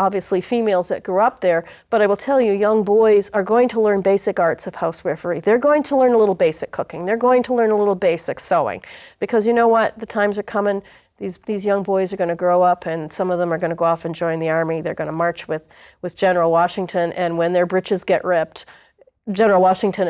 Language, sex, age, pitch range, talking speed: English, female, 40-59, 175-225 Hz, 240 wpm